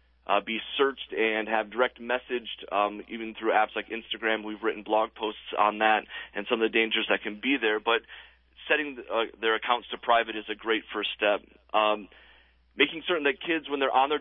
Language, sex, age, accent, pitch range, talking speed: English, male, 30-49, American, 105-120 Hz, 205 wpm